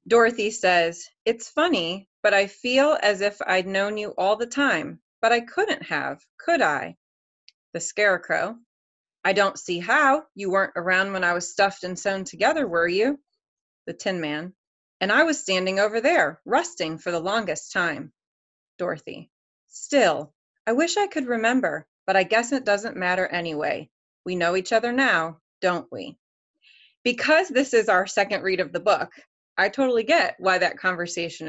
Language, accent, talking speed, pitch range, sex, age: English, American, 170 wpm, 170-225 Hz, female, 30-49